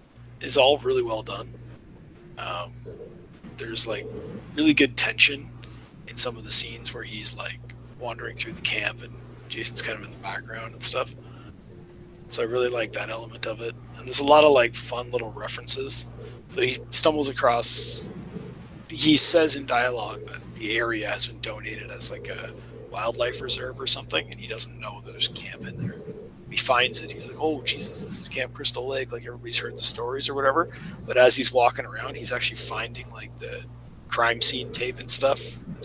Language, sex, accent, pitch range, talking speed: English, male, American, 115-130 Hz, 190 wpm